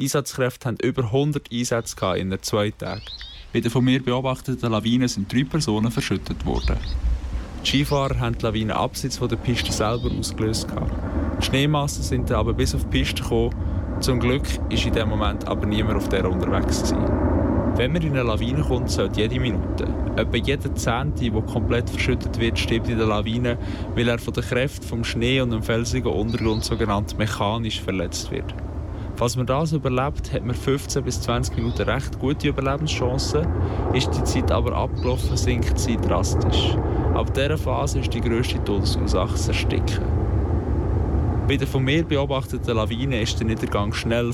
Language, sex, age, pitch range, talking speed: German, male, 20-39, 95-125 Hz, 170 wpm